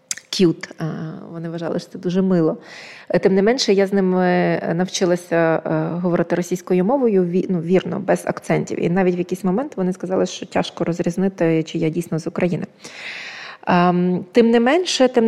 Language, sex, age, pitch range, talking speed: Ukrainian, female, 20-39, 170-195 Hz, 155 wpm